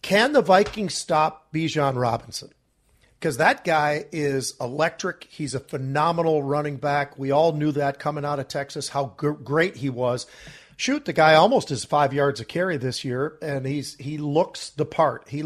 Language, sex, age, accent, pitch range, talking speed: English, male, 40-59, American, 140-170 Hz, 185 wpm